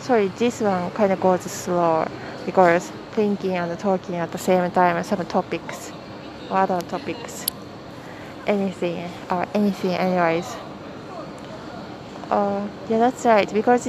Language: English